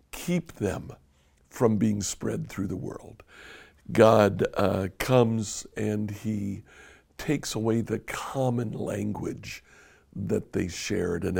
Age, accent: 60-79, American